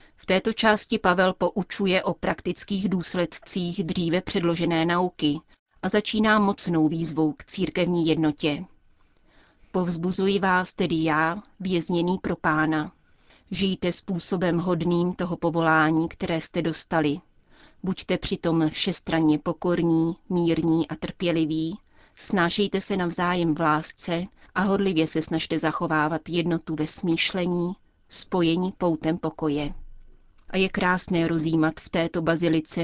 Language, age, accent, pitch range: Czech, 30-49, native, 160-185 Hz